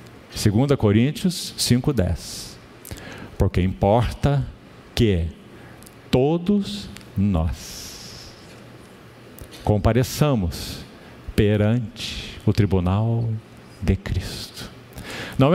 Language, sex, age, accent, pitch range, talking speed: Portuguese, male, 50-69, Brazilian, 105-145 Hz, 60 wpm